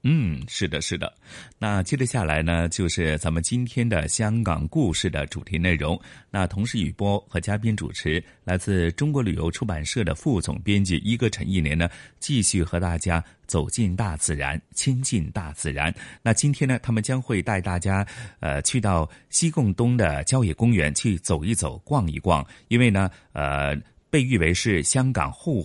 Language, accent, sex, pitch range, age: Chinese, native, male, 85-120 Hz, 30-49